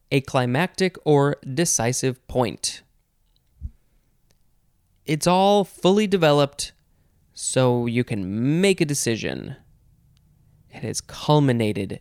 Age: 20-39